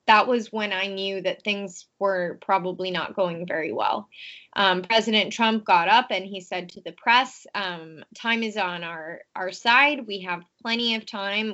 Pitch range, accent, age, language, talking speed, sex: 185-225 Hz, American, 20-39, English, 185 wpm, female